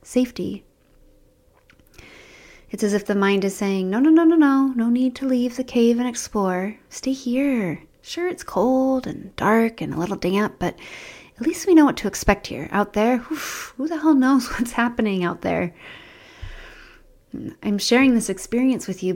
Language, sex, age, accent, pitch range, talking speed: English, female, 30-49, American, 180-230 Hz, 180 wpm